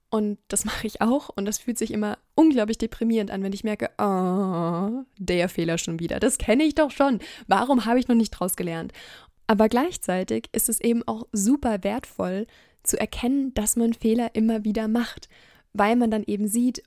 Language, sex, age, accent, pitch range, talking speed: German, female, 20-39, German, 200-240 Hz, 195 wpm